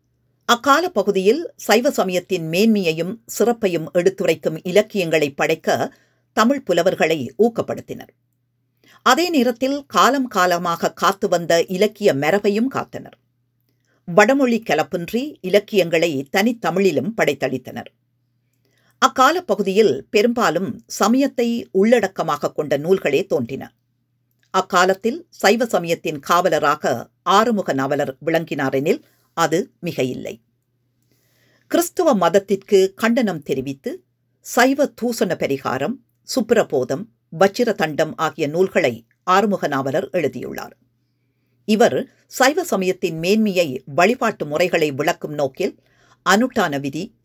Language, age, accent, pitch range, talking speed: Tamil, 50-69, native, 140-215 Hz, 85 wpm